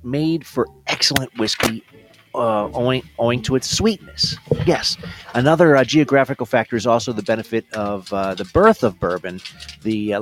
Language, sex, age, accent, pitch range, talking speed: English, male, 30-49, American, 110-155 Hz, 160 wpm